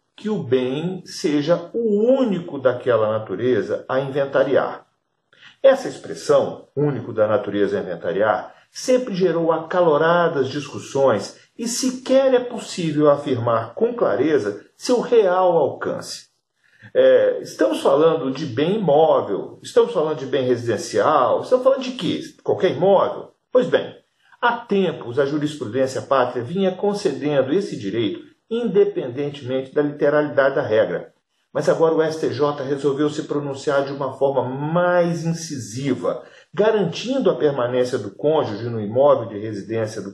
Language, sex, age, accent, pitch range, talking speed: Portuguese, male, 50-69, Brazilian, 140-215 Hz, 125 wpm